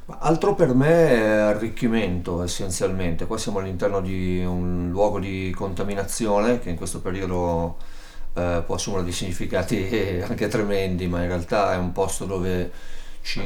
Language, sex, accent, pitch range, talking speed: Italian, male, native, 90-100 Hz, 145 wpm